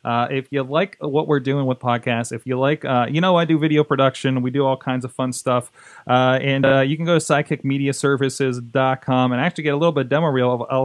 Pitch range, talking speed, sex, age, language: 125-150 Hz, 250 wpm, male, 30-49, English